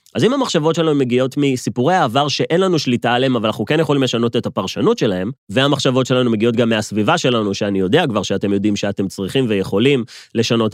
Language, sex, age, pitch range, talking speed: Hebrew, male, 30-49, 110-155 Hz, 190 wpm